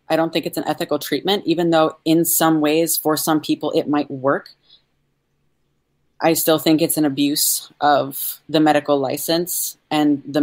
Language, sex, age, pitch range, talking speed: English, female, 30-49, 145-165 Hz, 175 wpm